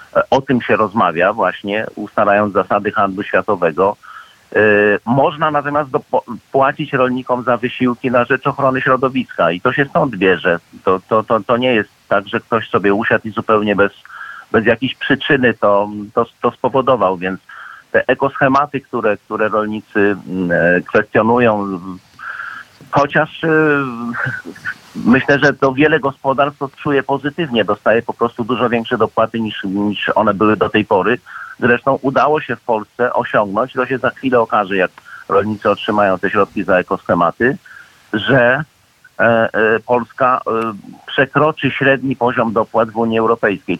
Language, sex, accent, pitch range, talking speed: Polish, male, native, 110-135 Hz, 135 wpm